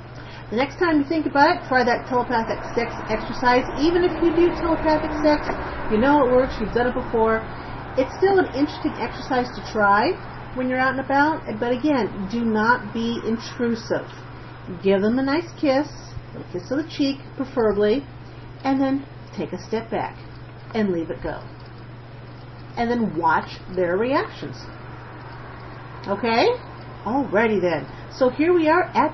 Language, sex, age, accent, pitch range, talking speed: English, female, 40-59, American, 190-270 Hz, 160 wpm